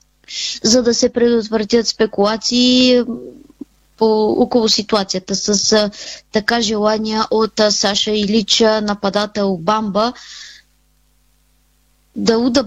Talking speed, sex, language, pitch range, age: 85 wpm, female, Bulgarian, 205-235 Hz, 20-39